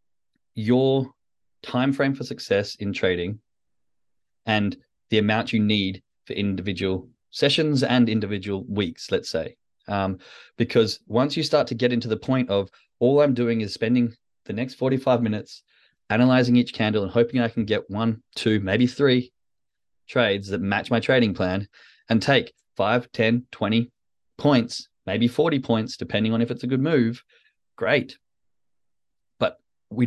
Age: 20-39